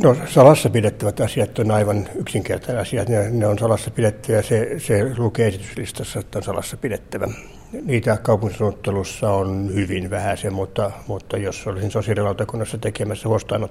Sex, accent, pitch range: male, native, 100-120 Hz